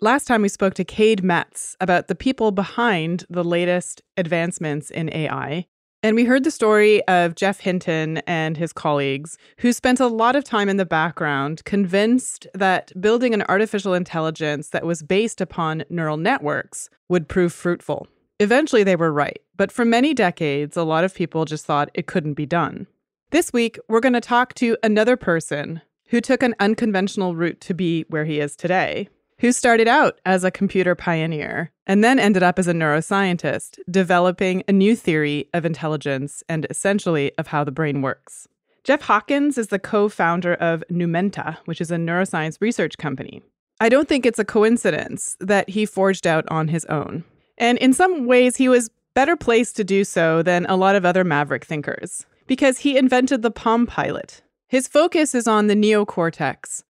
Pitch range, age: 165-225 Hz, 30-49